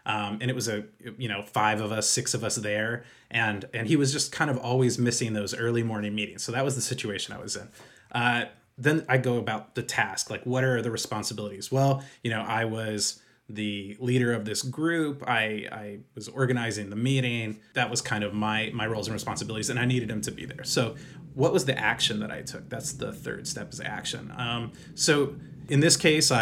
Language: English